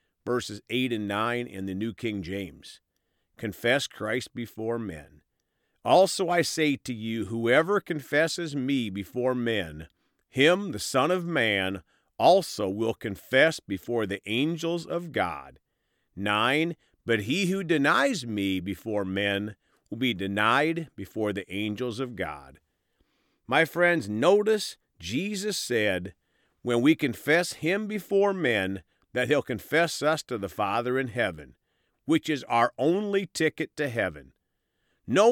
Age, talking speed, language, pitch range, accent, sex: 50-69, 135 wpm, English, 100-155 Hz, American, male